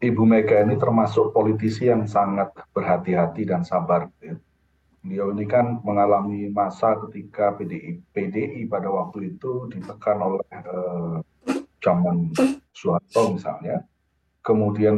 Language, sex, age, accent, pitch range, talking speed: Indonesian, male, 40-59, native, 90-115 Hz, 110 wpm